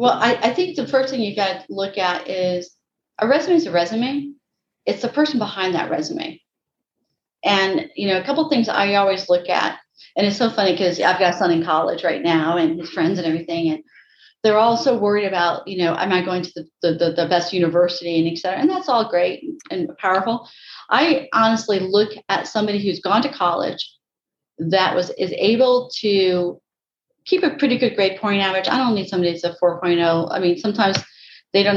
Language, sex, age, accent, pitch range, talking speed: English, female, 40-59, American, 175-225 Hz, 210 wpm